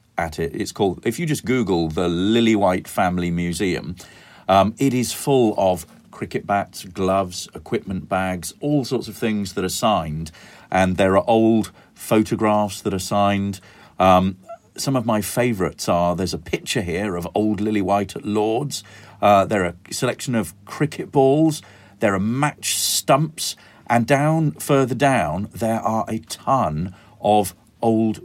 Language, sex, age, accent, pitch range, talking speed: English, male, 40-59, British, 95-115 Hz, 160 wpm